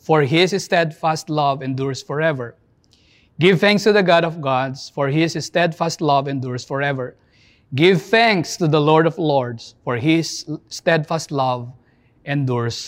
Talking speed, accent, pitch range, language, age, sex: 145 wpm, Filipino, 130-175 Hz, English, 20-39, male